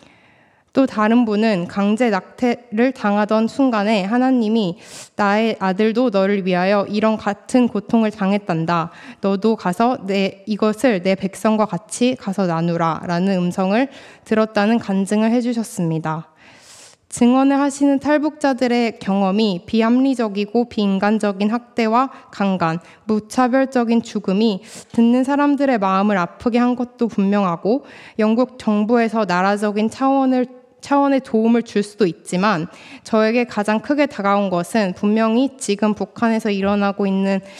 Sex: female